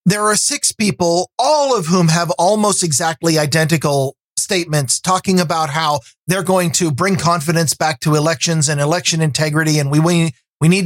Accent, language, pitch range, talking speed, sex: American, English, 155-195 Hz, 170 wpm, male